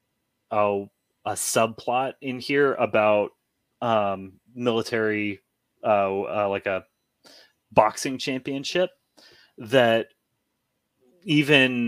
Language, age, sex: English, 30-49, male